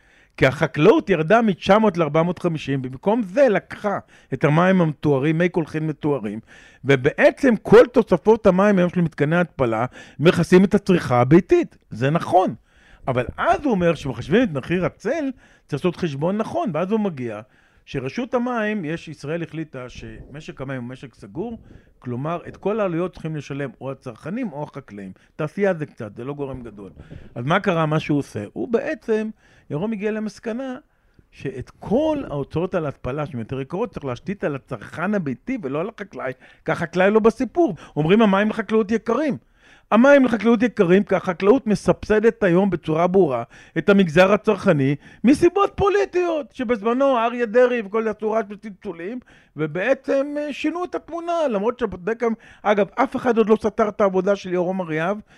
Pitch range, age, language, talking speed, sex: 155-225 Hz, 50-69, Hebrew, 155 wpm, male